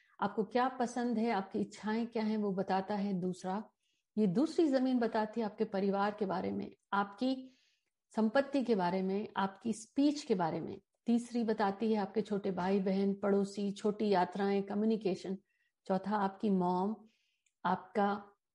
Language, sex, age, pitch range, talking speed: Hindi, female, 50-69, 190-230 Hz, 150 wpm